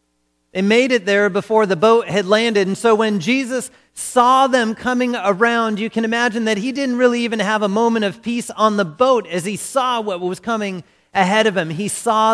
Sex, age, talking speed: male, 40-59, 215 wpm